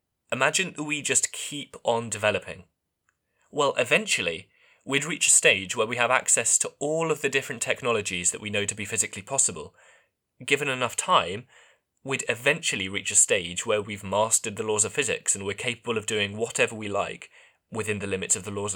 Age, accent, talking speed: 20-39, British, 190 wpm